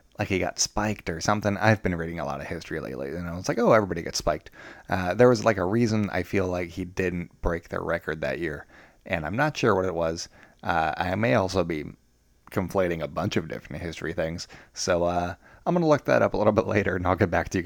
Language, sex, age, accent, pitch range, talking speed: English, male, 20-39, American, 85-110 Hz, 255 wpm